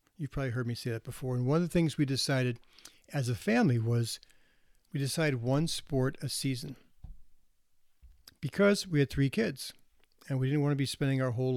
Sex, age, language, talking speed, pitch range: male, 60-79, English, 195 wpm, 130-155 Hz